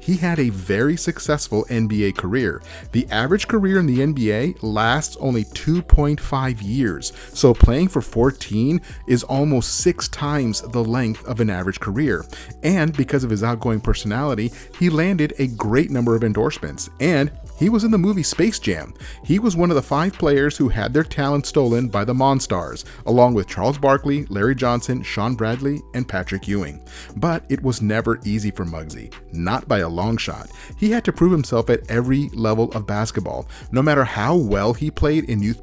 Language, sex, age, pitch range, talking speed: English, male, 40-59, 110-150 Hz, 180 wpm